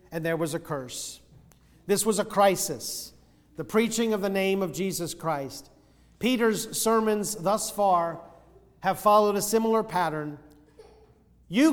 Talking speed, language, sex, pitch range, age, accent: 140 wpm, English, male, 125-200 Hz, 40-59, American